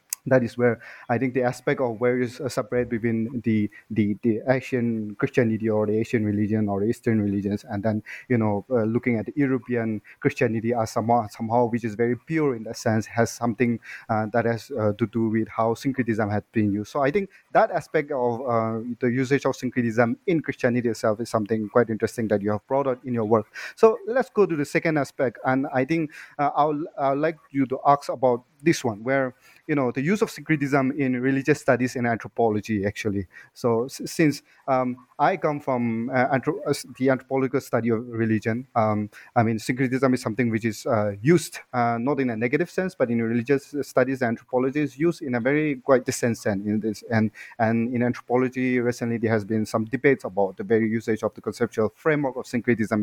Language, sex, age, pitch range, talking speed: English, male, 30-49, 110-135 Hz, 210 wpm